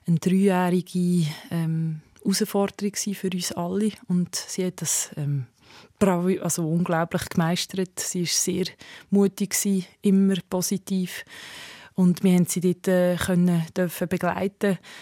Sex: female